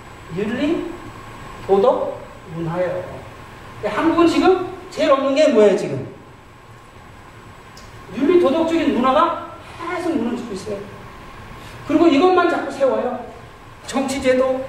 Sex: male